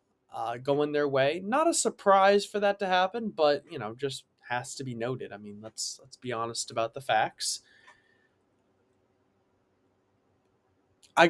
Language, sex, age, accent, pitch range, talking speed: English, male, 20-39, American, 130-180 Hz, 155 wpm